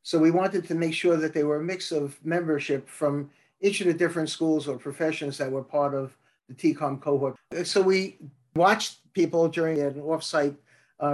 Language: English